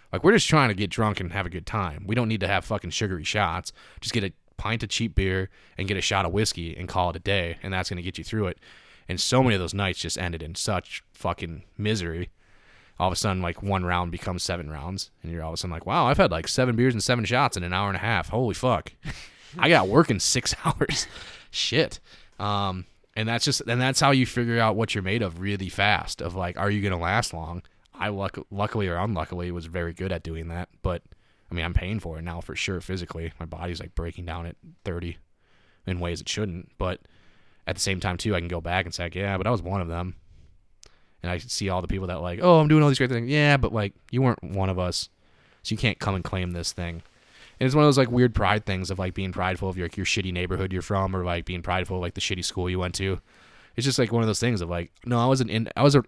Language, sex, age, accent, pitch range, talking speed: English, male, 20-39, American, 90-110 Hz, 275 wpm